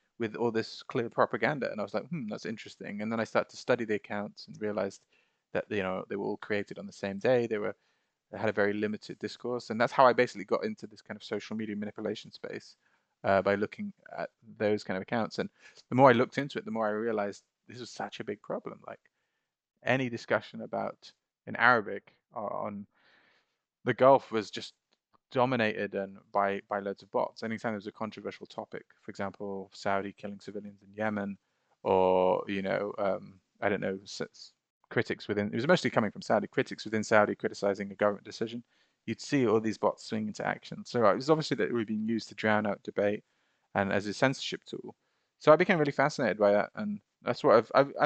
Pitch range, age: 100-120 Hz, 20-39